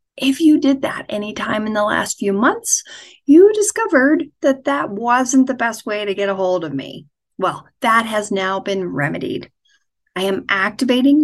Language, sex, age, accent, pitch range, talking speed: English, female, 40-59, American, 200-280 Hz, 180 wpm